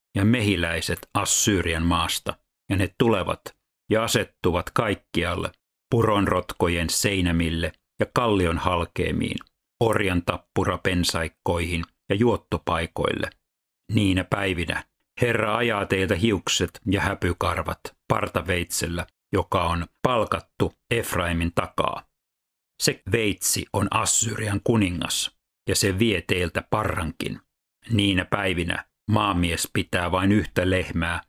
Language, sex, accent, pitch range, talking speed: Finnish, male, native, 85-105 Hz, 95 wpm